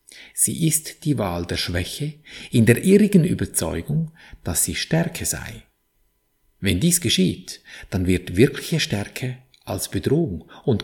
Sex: male